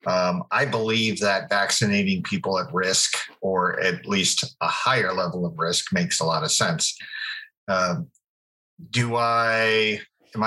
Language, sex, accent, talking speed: English, male, American, 145 wpm